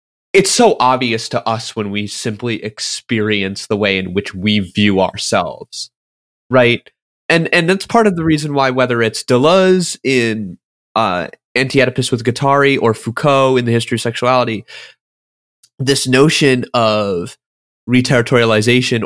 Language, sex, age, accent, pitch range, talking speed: English, male, 20-39, American, 110-140 Hz, 140 wpm